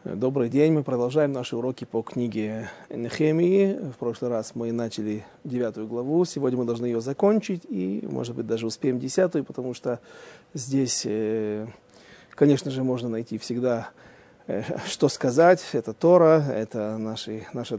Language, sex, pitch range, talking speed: Russian, male, 115-155 Hz, 140 wpm